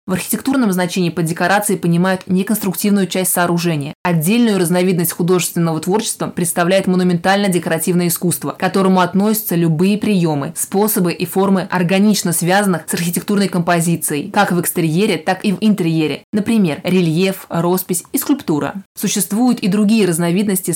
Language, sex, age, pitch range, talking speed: Russian, female, 20-39, 175-200 Hz, 135 wpm